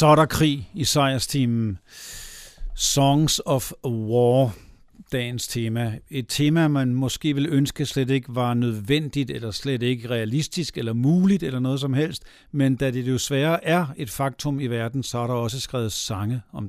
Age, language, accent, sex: 60-79, Danish, native, male